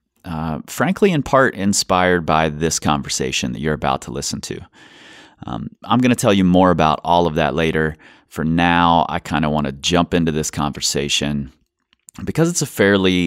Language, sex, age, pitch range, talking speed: English, male, 30-49, 75-95 Hz, 185 wpm